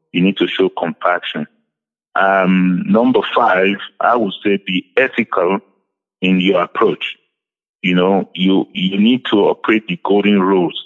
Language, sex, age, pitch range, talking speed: English, male, 50-69, 90-110 Hz, 145 wpm